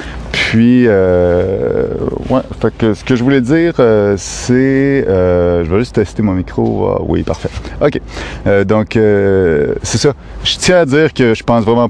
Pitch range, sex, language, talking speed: 85-110 Hz, male, French, 180 wpm